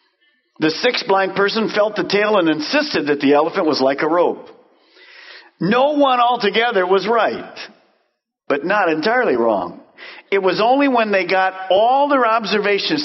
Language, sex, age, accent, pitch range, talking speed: English, male, 50-69, American, 155-230 Hz, 155 wpm